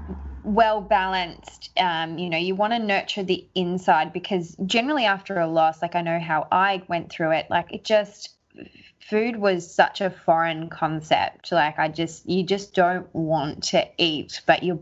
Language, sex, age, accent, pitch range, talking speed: English, female, 20-39, Australian, 165-190 Hz, 180 wpm